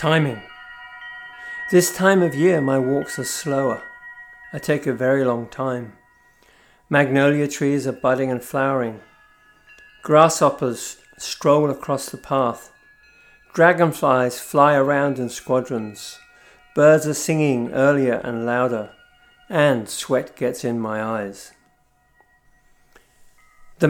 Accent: British